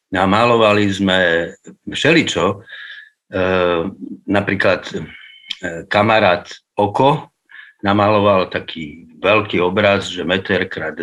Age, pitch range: 50-69, 90-105 Hz